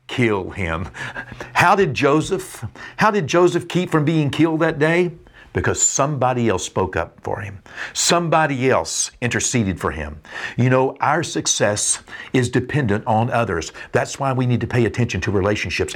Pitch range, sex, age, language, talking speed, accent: 100-135 Hz, male, 50-69, English, 160 wpm, American